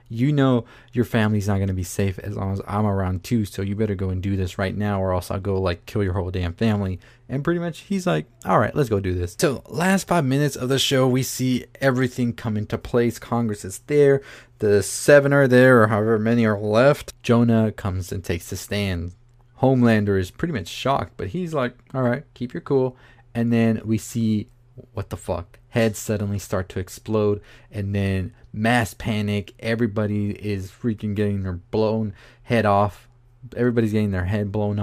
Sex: male